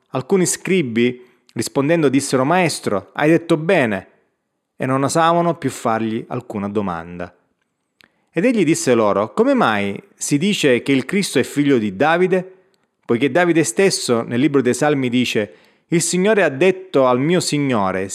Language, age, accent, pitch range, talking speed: Italian, 30-49, native, 120-160 Hz, 150 wpm